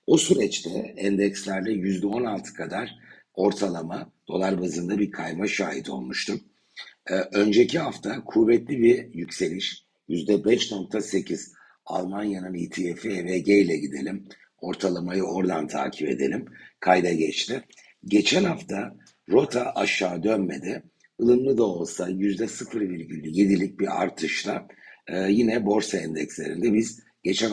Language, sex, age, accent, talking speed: Turkish, male, 60-79, native, 100 wpm